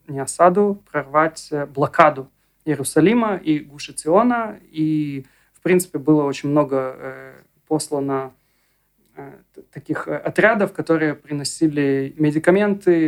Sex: male